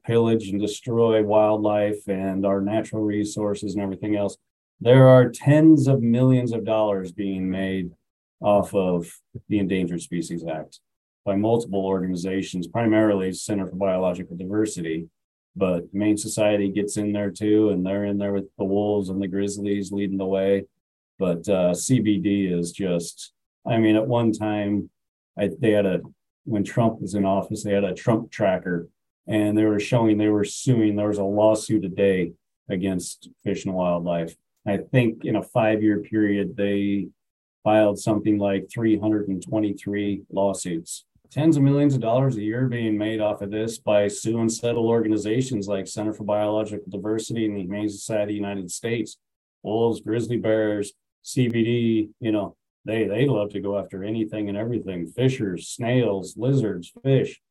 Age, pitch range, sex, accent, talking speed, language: 40-59, 95-110 Hz, male, American, 160 wpm, English